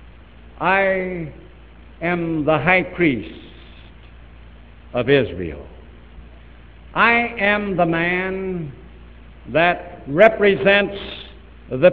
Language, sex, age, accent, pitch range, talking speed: English, male, 70-89, American, 120-195 Hz, 70 wpm